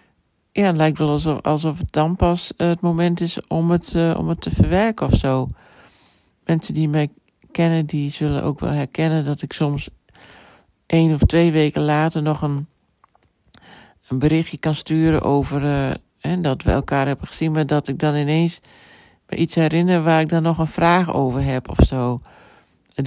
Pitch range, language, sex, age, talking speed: 140-160 Hz, Dutch, male, 60-79, 185 wpm